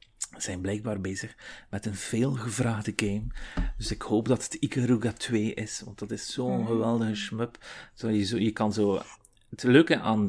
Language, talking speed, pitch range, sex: Dutch, 165 wpm, 105-120 Hz, male